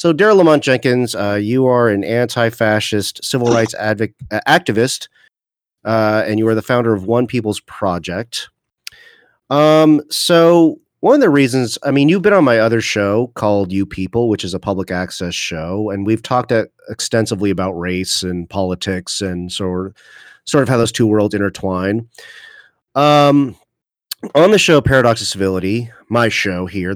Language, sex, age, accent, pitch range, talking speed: English, male, 30-49, American, 95-120 Hz, 165 wpm